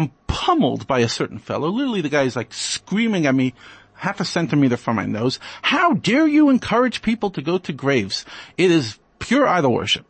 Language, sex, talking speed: English, male, 195 wpm